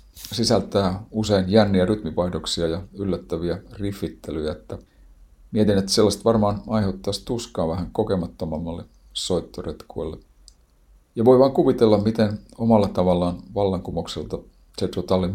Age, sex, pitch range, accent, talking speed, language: 50-69, male, 85-105 Hz, native, 105 wpm, Finnish